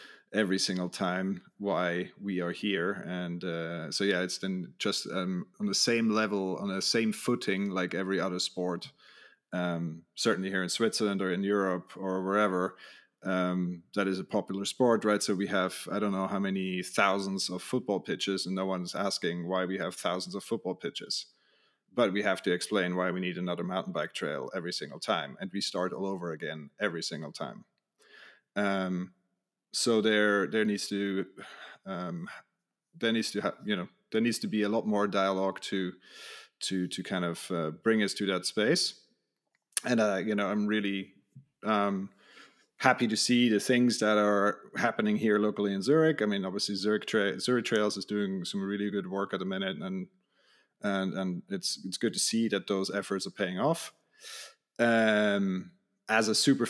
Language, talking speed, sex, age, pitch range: English, 185 wpm, male, 30-49, 95-110 Hz